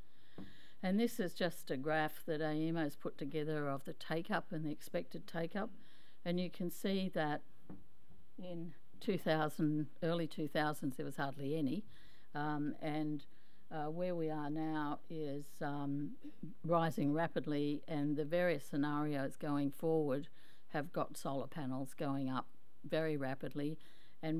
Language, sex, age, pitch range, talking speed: English, female, 60-79, 145-175 Hz, 140 wpm